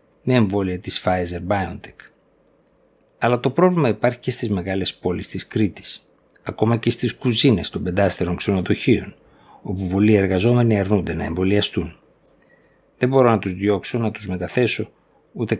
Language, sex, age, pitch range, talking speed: Greek, male, 50-69, 95-115 Hz, 140 wpm